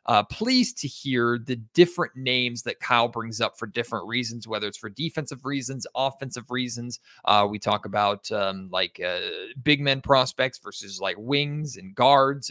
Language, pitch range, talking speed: English, 120-150 Hz, 175 wpm